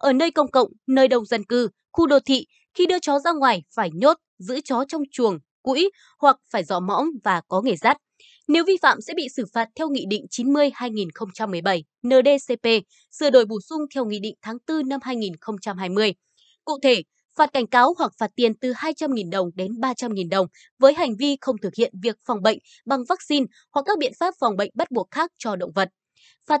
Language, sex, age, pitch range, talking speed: Vietnamese, female, 20-39, 215-290 Hz, 205 wpm